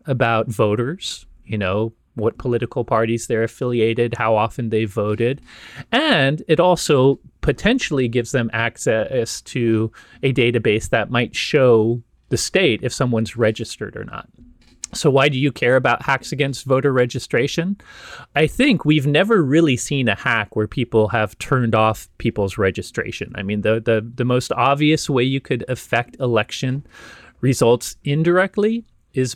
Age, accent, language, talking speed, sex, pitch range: 30-49, American, English, 150 wpm, male, 110-135 Hz